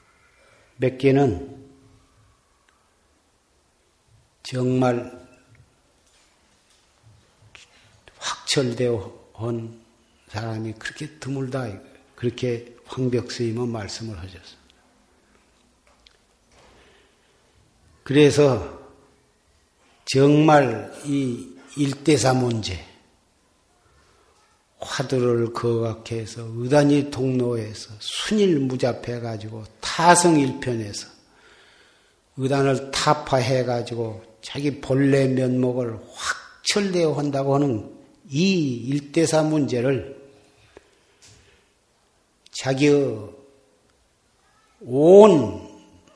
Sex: male